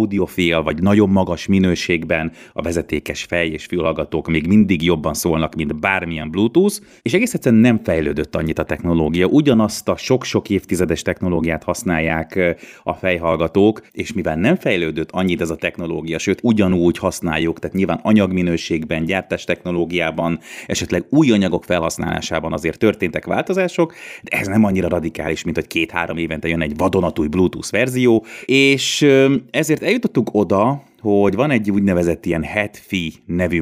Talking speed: 145 wpm